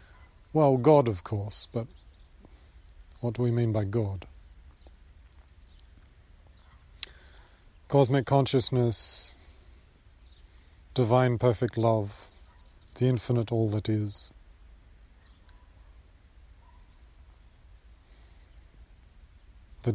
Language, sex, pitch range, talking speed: English, male, 75-110 Hz, 65 wpm